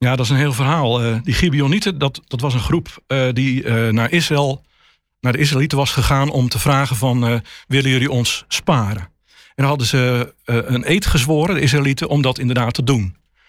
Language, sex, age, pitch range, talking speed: English, male, 50-69, 130-155 Hz, 190 wpm